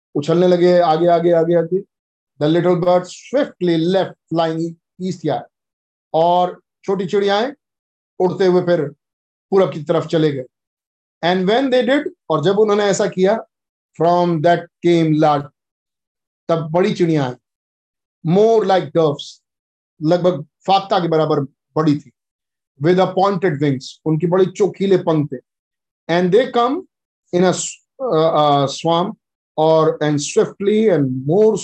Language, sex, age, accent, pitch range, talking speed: Hindi, male, 50-69, native, 150-195 Hz, 120 wpm